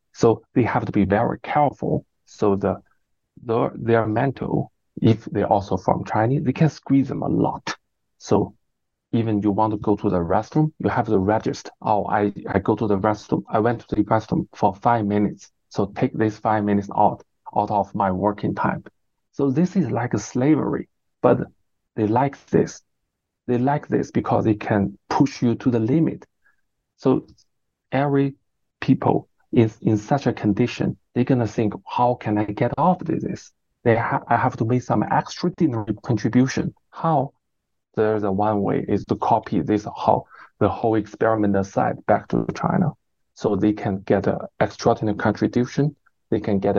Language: English